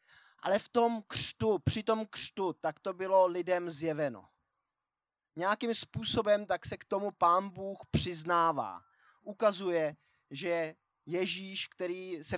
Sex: male